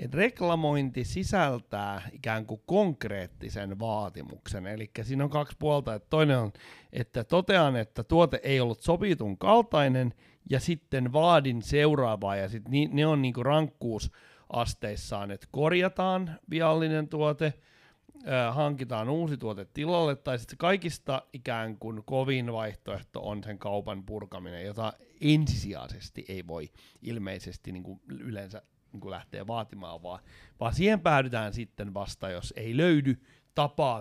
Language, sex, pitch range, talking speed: Finnish, male, 105-155 Hz, 125 wpm